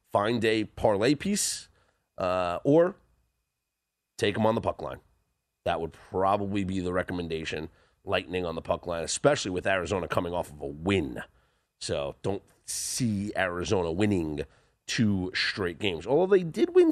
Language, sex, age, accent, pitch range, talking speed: English, male, 30-49, American, 85-125 Hz, 155 wpm